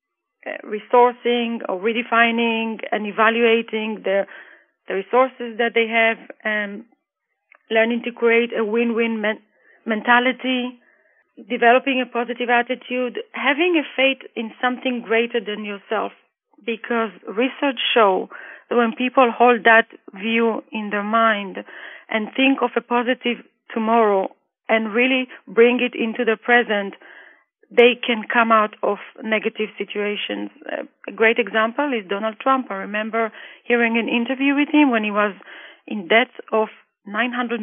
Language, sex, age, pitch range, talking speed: English, female, 40-59, 220-250 Hz, 135 wpm